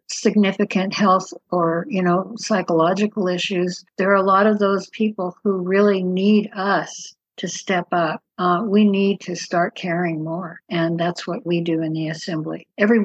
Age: 60-79